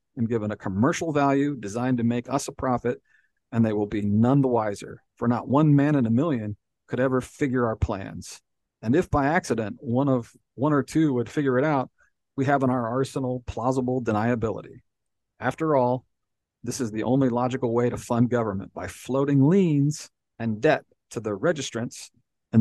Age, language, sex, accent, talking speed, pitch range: 40-59, English, male, American, 185 wpm, 110-135 Hz